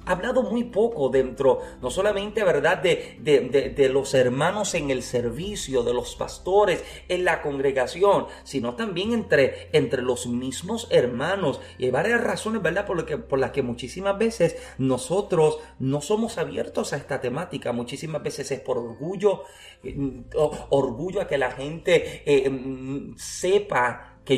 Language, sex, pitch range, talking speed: Spanish, male, 130-205 Hz, 155 wpm